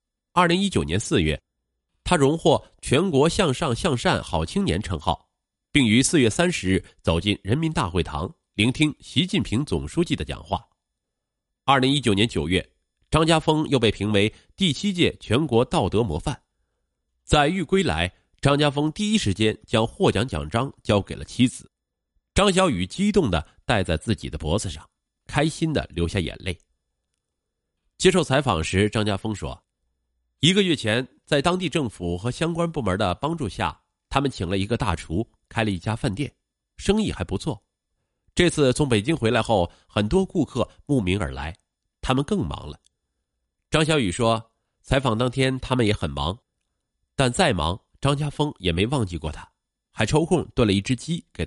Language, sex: Chinese, male